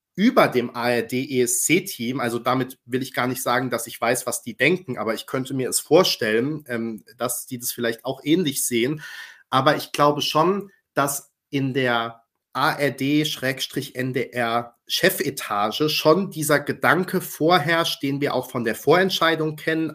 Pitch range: 125-150 Hz